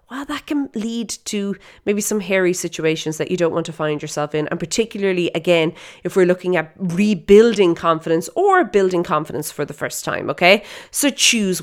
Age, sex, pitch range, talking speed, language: 30-49, female, 170-220 Hz, 185 wpm, English